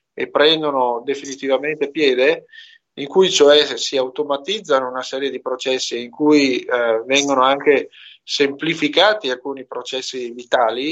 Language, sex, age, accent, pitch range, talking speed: Italian, male, 30-49, native, 135-210 Hz, 120 wpm